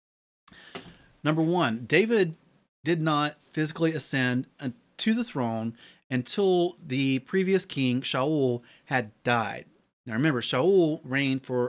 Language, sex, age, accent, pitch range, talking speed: English, male, 30-49, American, 120-155 Hz, 115 wpm